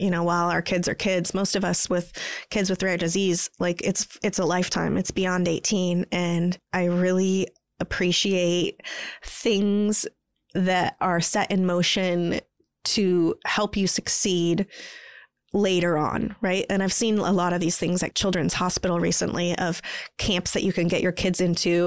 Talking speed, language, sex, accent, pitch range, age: 170 wpm, English, female, American, 175-210 Hz, 20-39